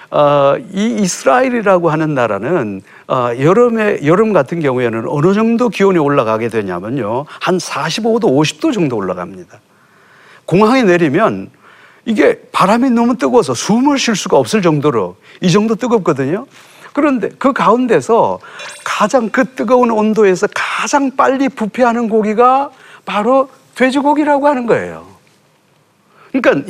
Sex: male